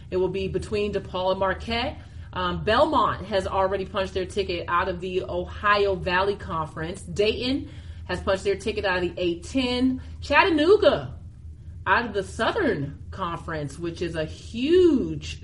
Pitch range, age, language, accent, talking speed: 175-230 Hz, 30-49, English, American, 150 wpm